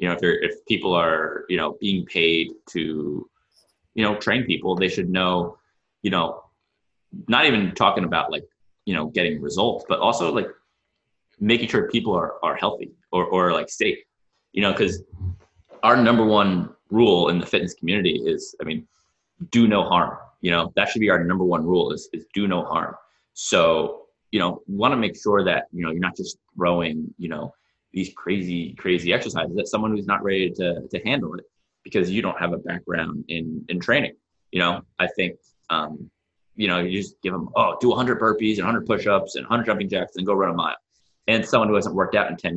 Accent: American